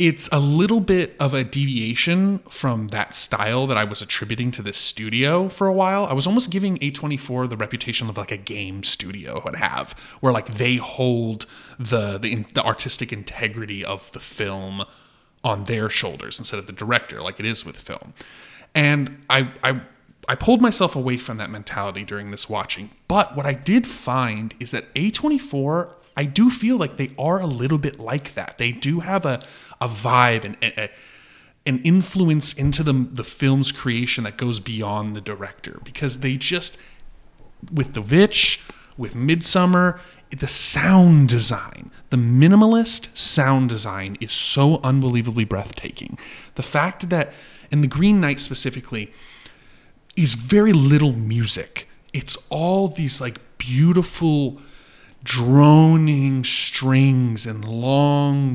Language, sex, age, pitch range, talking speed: English, male, 20-39, 115-155 Hz, 155 wpm